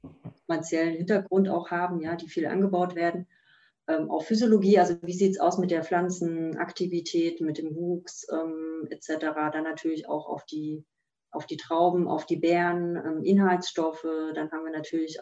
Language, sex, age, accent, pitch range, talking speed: German, female, 30-49, German, 160-180 Hz, 165 wpm